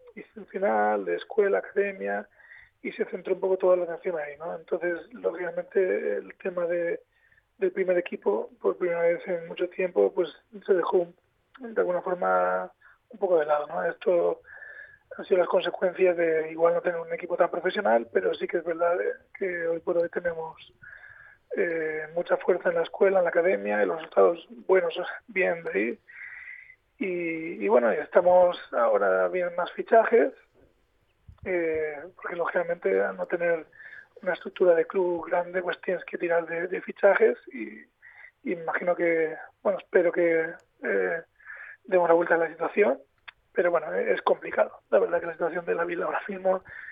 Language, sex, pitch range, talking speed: Spanish, male, 170-205 Hz, 170 wpm